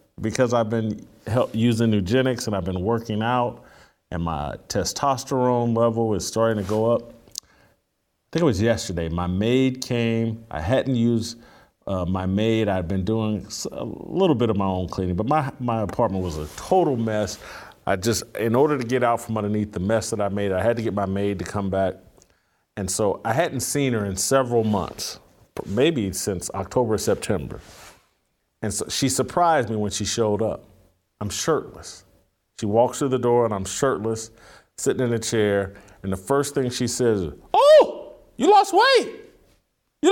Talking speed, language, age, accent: 180 wpm, English, 40-59, American